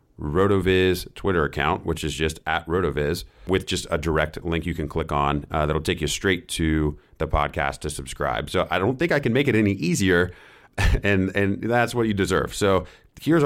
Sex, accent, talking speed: male, American, 200 wpm